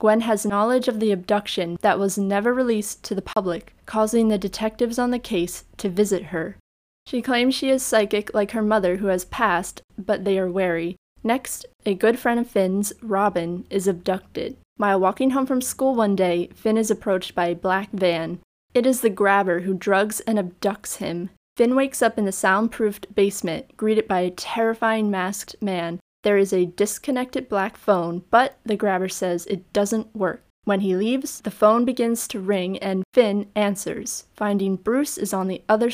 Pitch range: 190-225 Hz